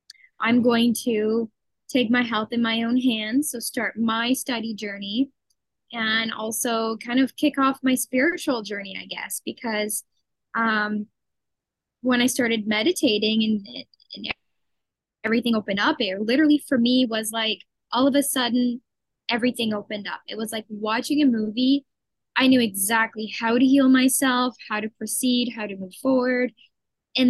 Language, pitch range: English, 215-255 Hz